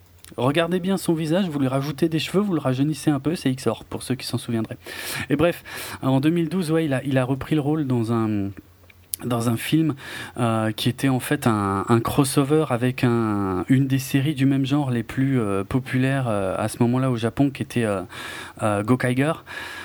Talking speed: 210 wpm